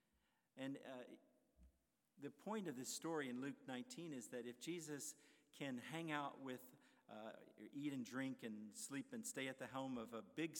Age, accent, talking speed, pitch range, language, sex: 50-69, American, 180 wpm, 120-160 Hz, English, male